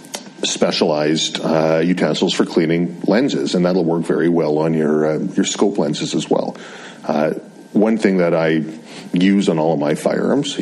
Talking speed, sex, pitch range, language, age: 170 wpm, male, 80-90 Hz, English, 40-59